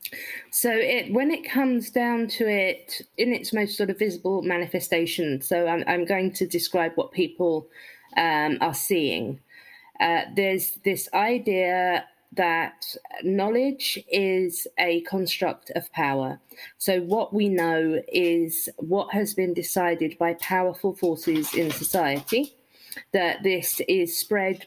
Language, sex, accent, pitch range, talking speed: English, female, British, 165-210 Hz, 130 wpm